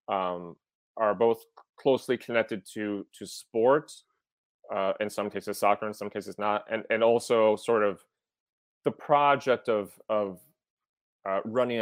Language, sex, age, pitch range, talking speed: English, male, 30-49, 100-115 Hz, 140 wpm